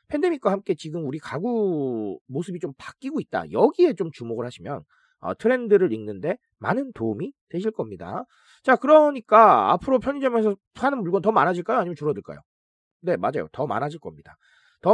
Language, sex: Korean, male